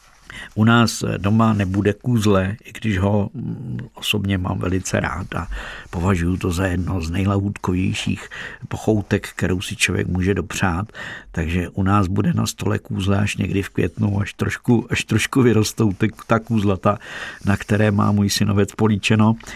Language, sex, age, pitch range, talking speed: Czech, male, 50-69, 90-105 Hz, 155 wpm